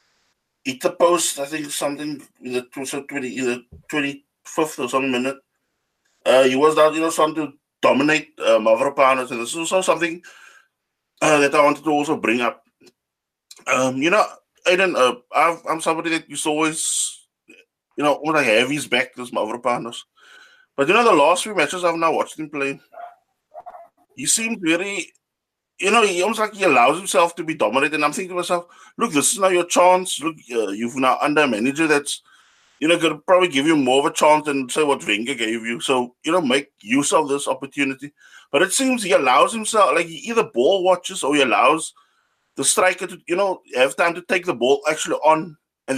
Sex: male